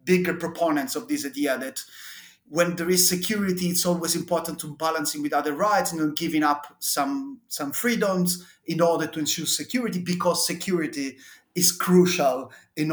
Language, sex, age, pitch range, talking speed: English, male, 30-49, 150-195 Hz, 165 wpm